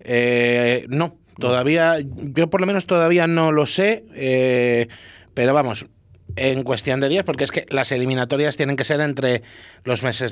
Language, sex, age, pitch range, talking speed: Spanish, male, 30-49, 120-155 Hz, 165 wpm